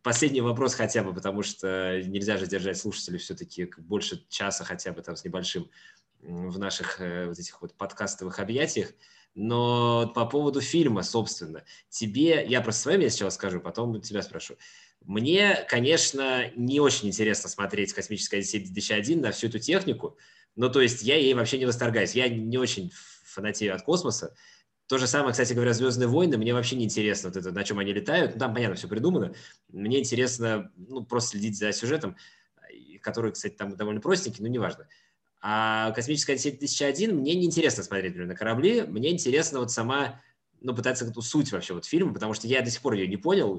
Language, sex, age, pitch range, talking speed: Russian, male, 20-39, 100-125 Hz, 185 wpm